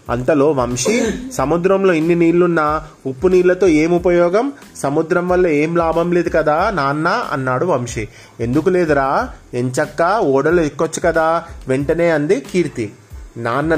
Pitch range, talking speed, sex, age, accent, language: 130-165 Hz, 120 wpm, male, 30-49, native, Telugu